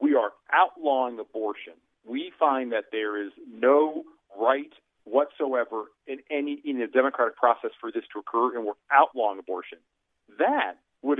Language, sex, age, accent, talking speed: English, male, 40-59, American, 150 wpm